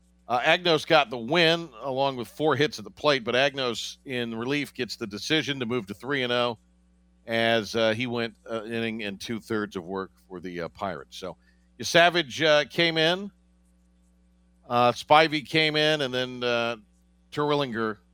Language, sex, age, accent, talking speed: English, male, 50-69, American, 165 wpm